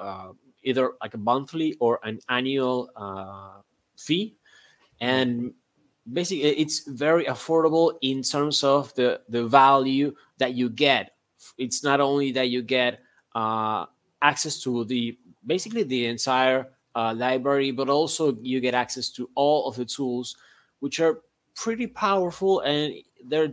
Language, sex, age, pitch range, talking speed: English, male, 20-39, 125-155 Hz, 140 wpm